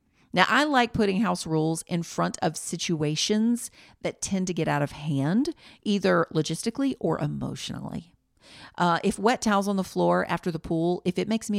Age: 40-59